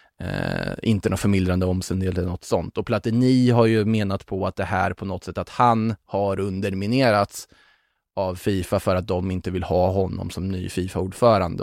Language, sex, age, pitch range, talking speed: Swedish, male, 20-39, 100-125 Hz, 185 wpm